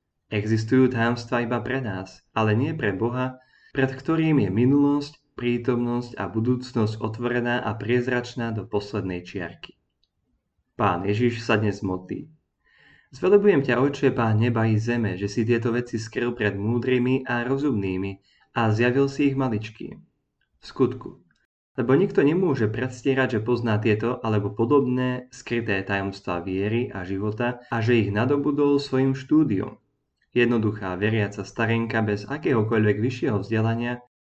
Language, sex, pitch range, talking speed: Slovak, male, 105-125 Hz, 135 wpm